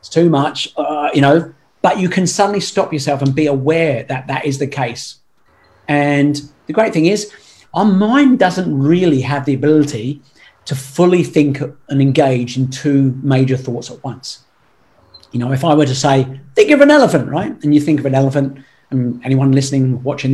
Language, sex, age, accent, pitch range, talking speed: English, male, 40-59, British, 135-170 Hz, 190 wpm